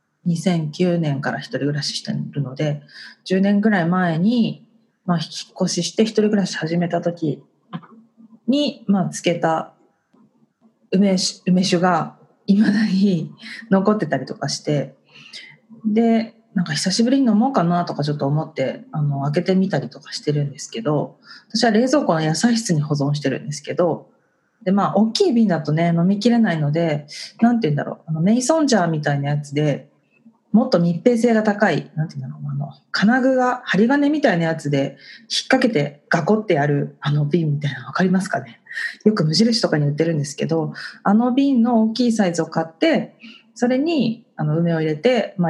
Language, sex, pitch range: Japanese, female, 160-230 Hz